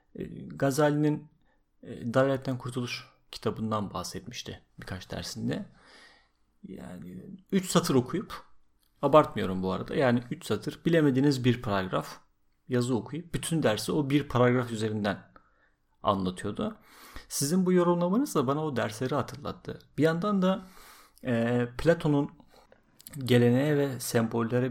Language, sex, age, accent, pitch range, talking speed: Turkish, male, 40-59, native, 110-140 Hz, 110 wpm